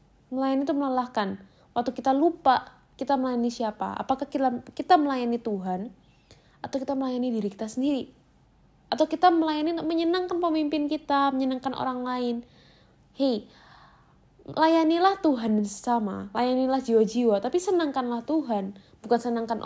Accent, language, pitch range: native, Indonesian, 210-265 Hz